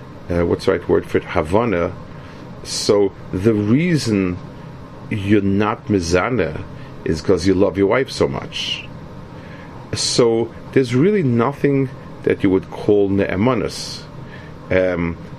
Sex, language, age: male, English, 40-59